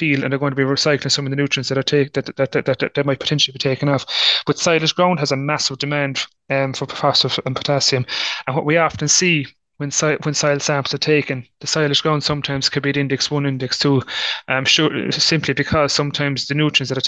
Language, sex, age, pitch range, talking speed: English, male, 30-49, 135-150 Hz, 235 wpm